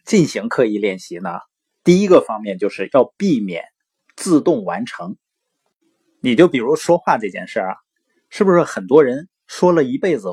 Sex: male